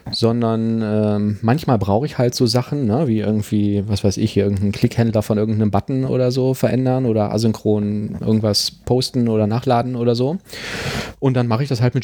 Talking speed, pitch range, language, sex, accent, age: 185 wpm, 105-125 Hz, German, male, German, 30-49